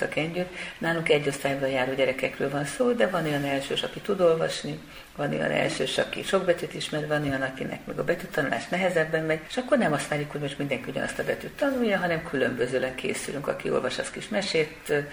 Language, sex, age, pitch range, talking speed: Hungarian, female, 50-69, 140-175 Hz, 195 wpm